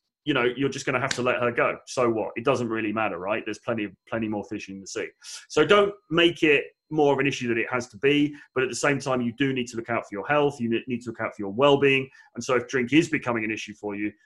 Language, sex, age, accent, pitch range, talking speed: English, male, 30-49, British, 115-155 Hz, 300 wpm